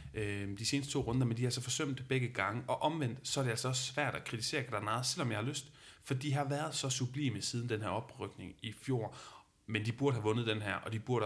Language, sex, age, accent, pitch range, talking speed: Danish, male, 30-49, native, 105-130 Hz, 260 wpm